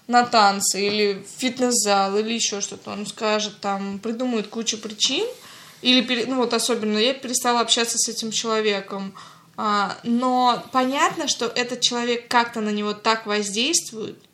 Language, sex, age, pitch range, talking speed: Russian, female, 20-39, 210-245 Hz, 145 wpm